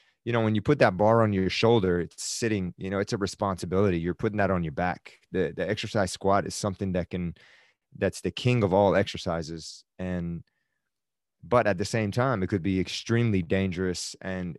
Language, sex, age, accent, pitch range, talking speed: English, male, 30-49, American, 90-110 Hz, 200 wpm